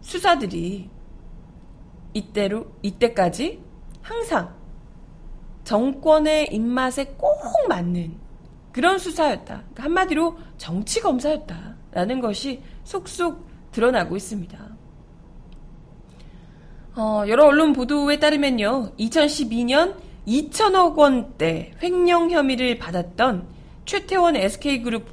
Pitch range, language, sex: 185-290 Hz, Korean, female